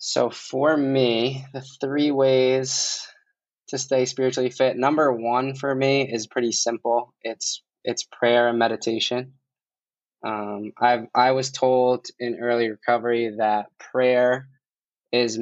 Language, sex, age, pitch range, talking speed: English, male, 20-39, 110-125 Hz, 130 wpm